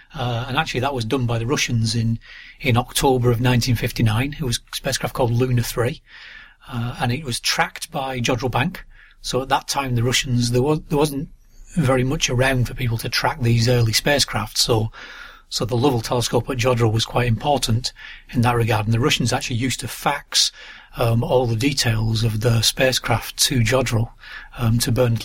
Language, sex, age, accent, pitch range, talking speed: English, male, 30-49, British, 120-135 Hz, 195 wpm